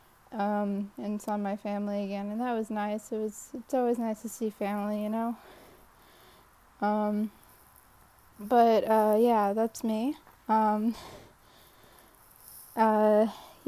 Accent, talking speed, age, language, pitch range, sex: American, 125 wpm, 10-29, English, 205-230 Hz, female